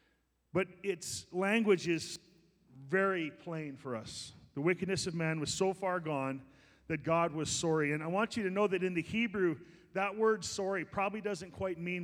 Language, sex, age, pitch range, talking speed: English, male, 40-59, 160-205 Hz, 185 wpm